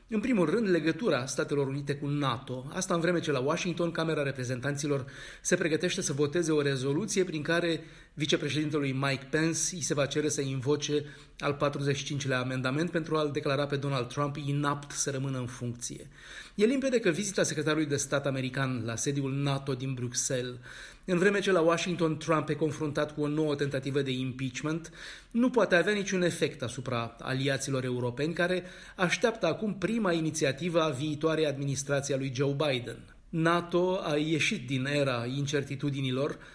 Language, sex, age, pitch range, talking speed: Romanian, male, 30-49, 135-160 Hz, 165 wpm